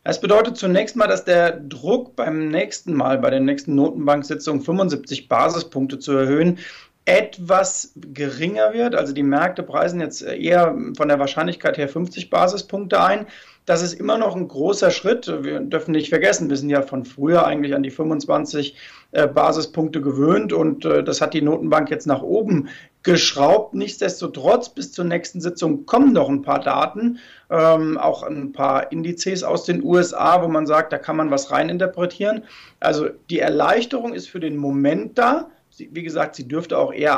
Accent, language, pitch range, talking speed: German, German, 145-180 Hz, 170 wpm